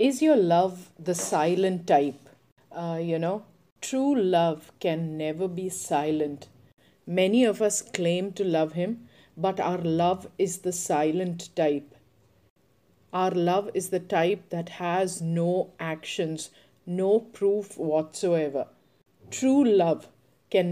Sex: female